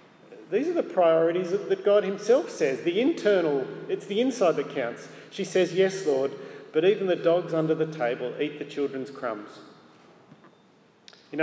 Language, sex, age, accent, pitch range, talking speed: English, male, 40-59, Australian, 140-170 Hz, 165 wpm